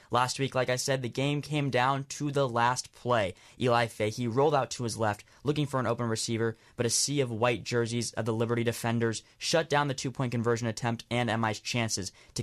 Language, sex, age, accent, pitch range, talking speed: English, male, 10-29, American, 110-130 Hz, 215 wpm